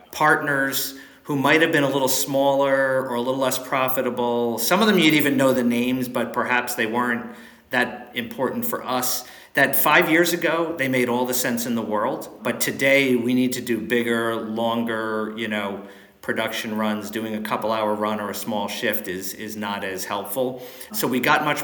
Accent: American